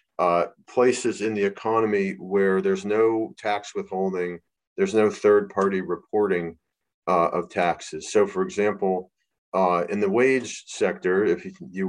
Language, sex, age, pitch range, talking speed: English, male, 40-59, 95-125 Hz, 135 wpm